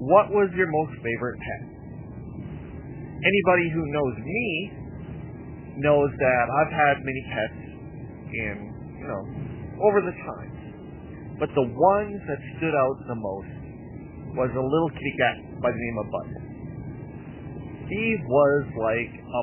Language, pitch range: English, 125-175 Hz